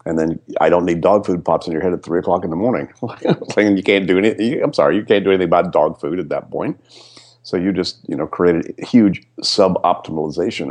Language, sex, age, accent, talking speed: English, male, 50-69, American, 235 wpm